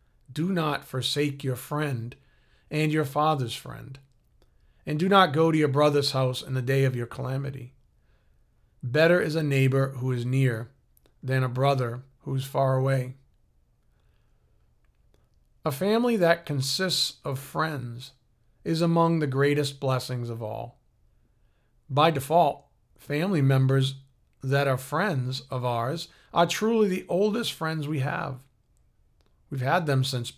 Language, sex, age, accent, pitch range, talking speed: English, male, 40-59, American, 125-150 Hz, 140 wpm